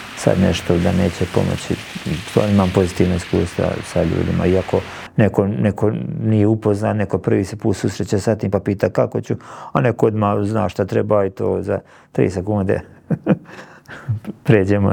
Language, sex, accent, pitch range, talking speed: Croatian, male, native, 105-145 Hz, 155 wpm